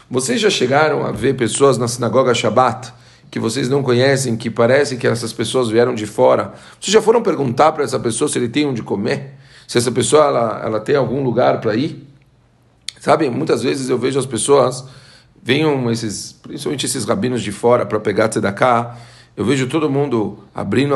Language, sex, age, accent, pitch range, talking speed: Portuguese, male, 40-59, Brazilian, 115-145 Hz, 185 wpm